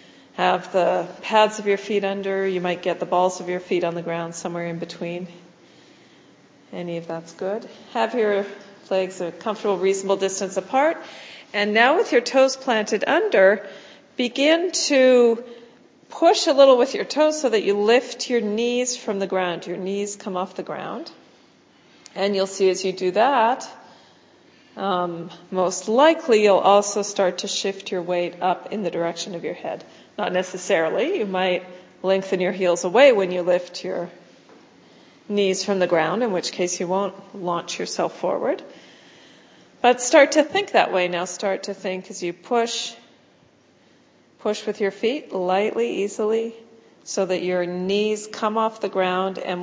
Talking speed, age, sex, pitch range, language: 170 wpm, 40-59, female, 180-220 Hz, English